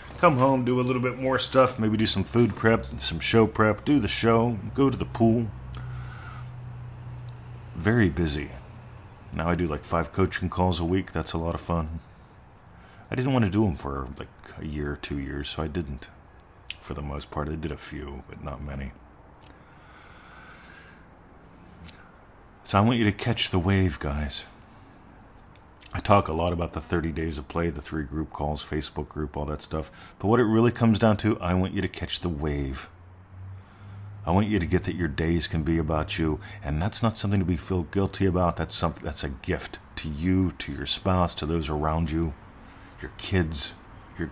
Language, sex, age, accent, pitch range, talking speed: English, male, 40-59, American, 80-105 Hz, 200 wpm